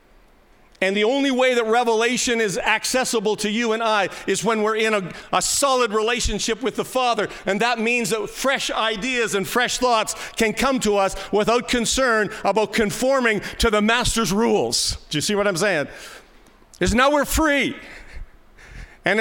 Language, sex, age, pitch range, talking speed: English, male, 50-69, 200-240 Hz, 170 wpm